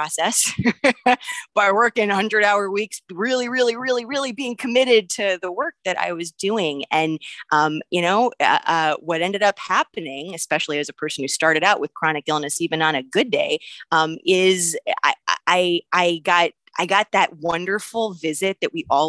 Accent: American